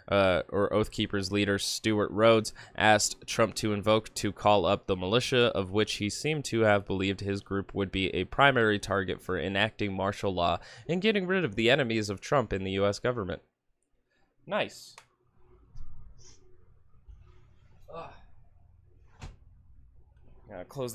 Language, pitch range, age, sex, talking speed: English, 100-120 Hz, 20-39, male, 140 wpm